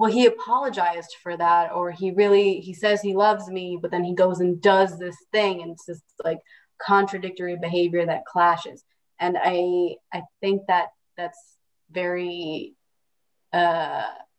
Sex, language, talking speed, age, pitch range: female, English, 155 wpm, 20-39, 175-205 Hz